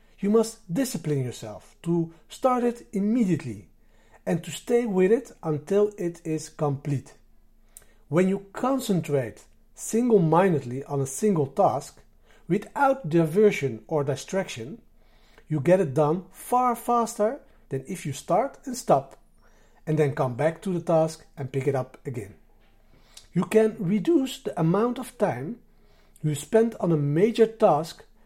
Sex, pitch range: male, 145-220 Hz